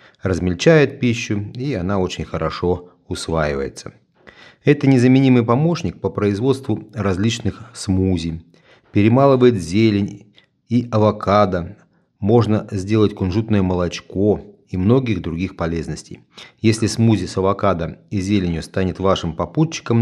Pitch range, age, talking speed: 90-120 Hz, 30-49, 105 wpm